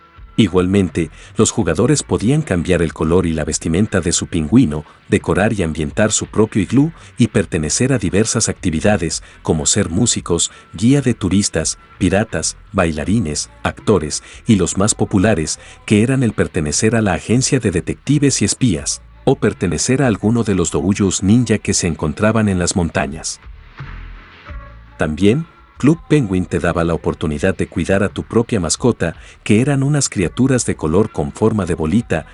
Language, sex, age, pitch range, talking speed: Spanish, male, 50-69, 85-115 Hz, 160 wpm